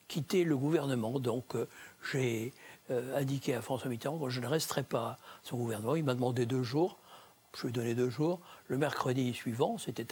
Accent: French